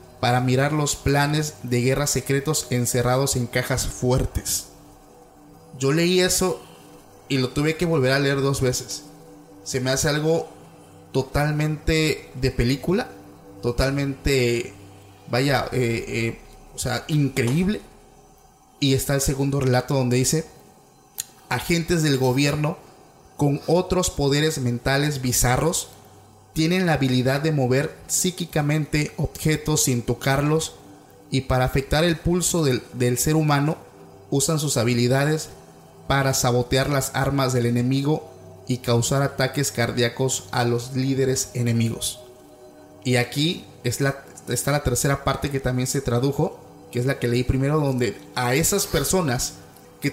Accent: Venezuelan